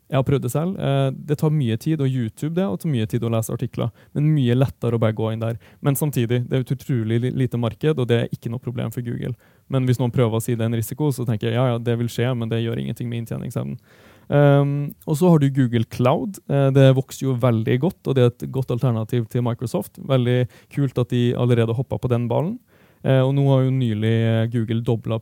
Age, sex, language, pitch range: 20-39, male, English, 115-135 Hz